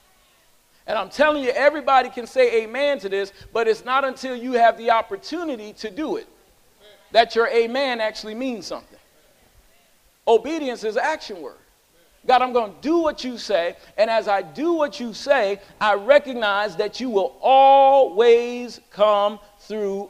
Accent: American